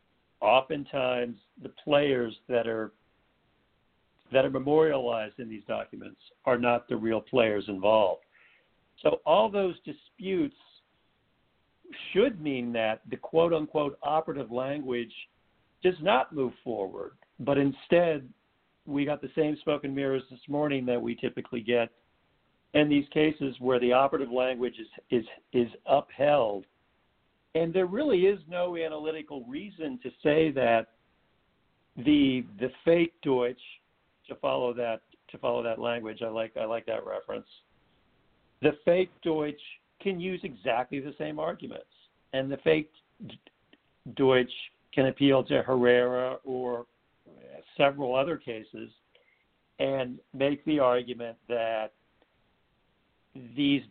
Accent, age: American, 60-79